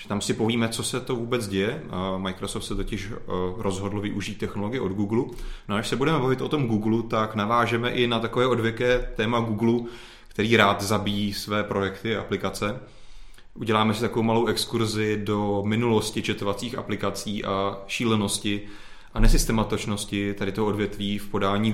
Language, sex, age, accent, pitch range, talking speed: Czech, male, 30-49, native, 100-110 Hz, 160 wpm